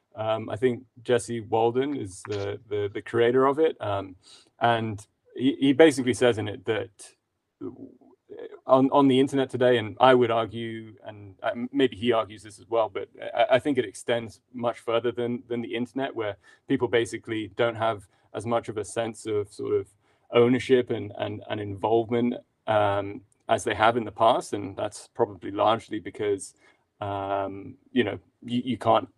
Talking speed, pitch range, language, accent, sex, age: 175 wpm, 110-125 Hz, English, British, male, 20-39